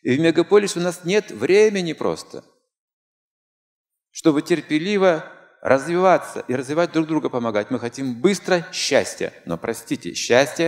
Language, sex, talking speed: Russian, male, 130 wpm